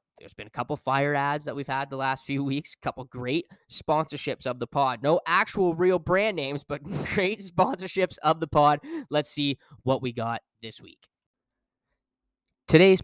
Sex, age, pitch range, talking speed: male, 10-29, 140-215 Hz, 190 wpm